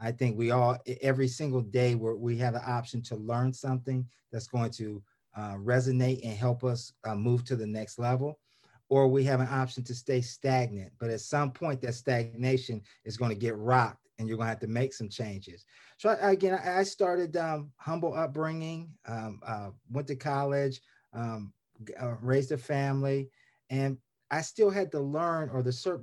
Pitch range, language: 120-145 Hz, English